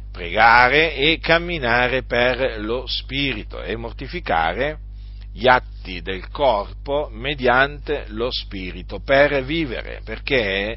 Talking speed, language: 100 wpm, Italian